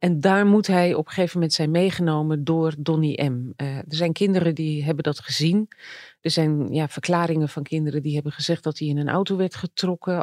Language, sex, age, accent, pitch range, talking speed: Dutch, female, 40-59, Dutch, 150-175 Hz, 210 wpm